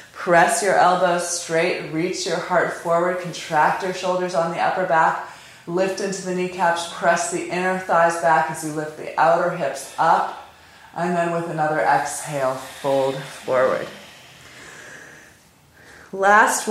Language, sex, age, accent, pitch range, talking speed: English, female, 30-49, American, 155-185 Hz, 140 wpm